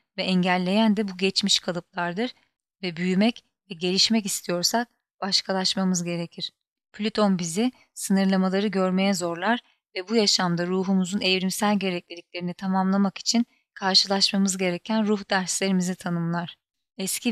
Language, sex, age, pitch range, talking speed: Turkish, female, 30-49, 180-210 Hz, 110 wpm